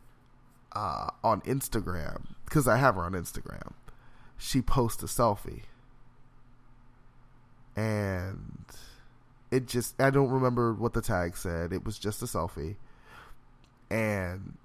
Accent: American